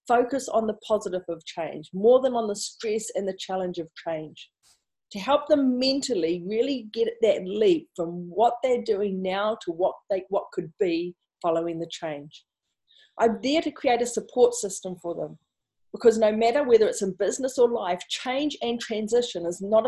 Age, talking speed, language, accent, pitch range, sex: 40-59, 185 wpm, English, Australian, 185-250 Hz, female